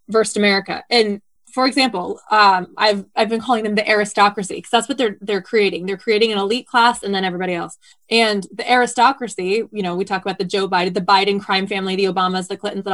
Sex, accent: female, American